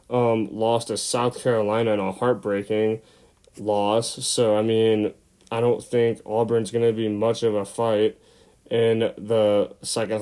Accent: American